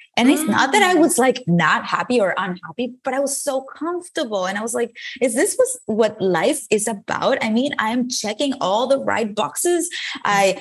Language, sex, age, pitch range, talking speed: English, female, 20-39, 190-265 Hz, 200 wpm